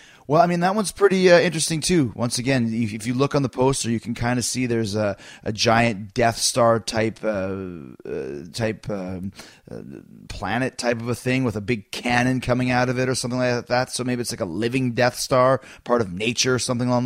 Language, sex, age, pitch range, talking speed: English, male, 30-49, 115-140 Hz, 225 wpm